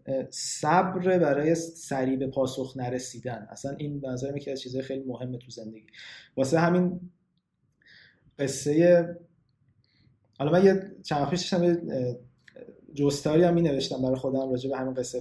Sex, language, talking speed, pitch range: male, Persian, 125 wpm, 140-175 Hz